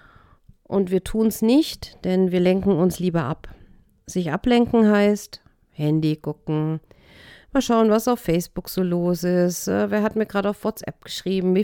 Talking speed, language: 165 wpm, German